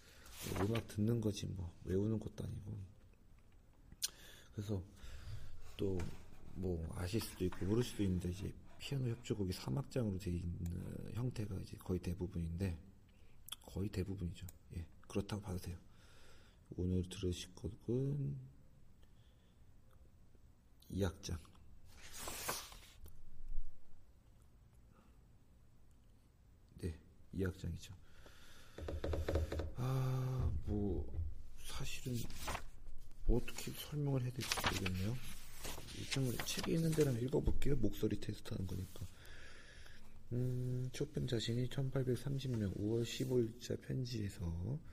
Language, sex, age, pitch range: Korean, male, 40-59, 90-115 Hz